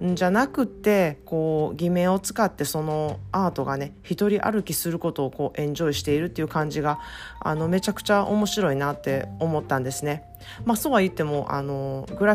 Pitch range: 145-190 Hz